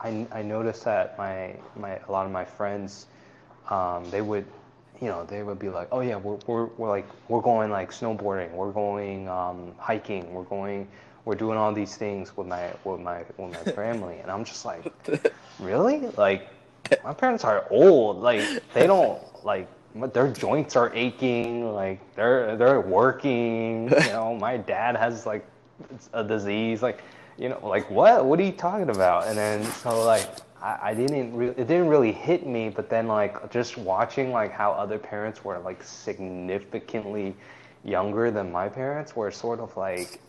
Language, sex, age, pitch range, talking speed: English, male, 20-39, 100-120 Hz, 180 wpm